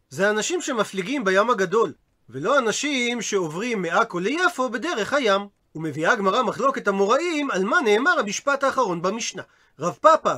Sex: male